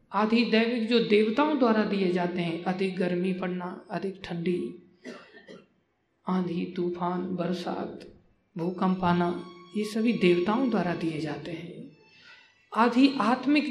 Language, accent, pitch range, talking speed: Hindi, native, 175-225 Hz, 120 wpm